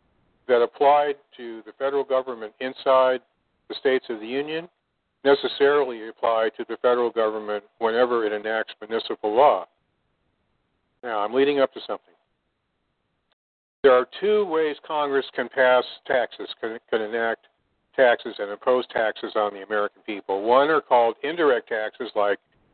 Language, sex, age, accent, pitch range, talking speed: English, male, 50-69, American, 120-150 Hz, 145 wpm